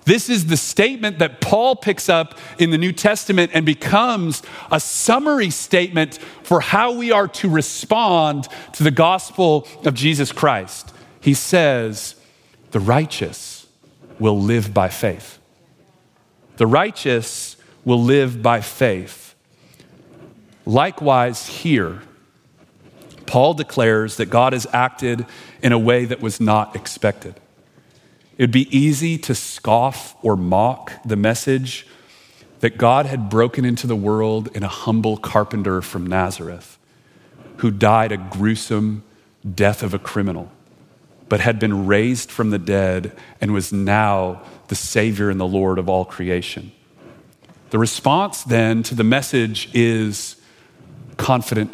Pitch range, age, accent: 105-150 Hz, 40-59, American